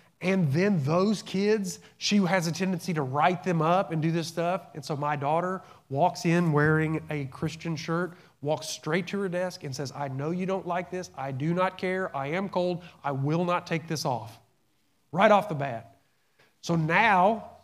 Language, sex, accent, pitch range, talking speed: English, male, American, 145-180 Hz, 195 wpm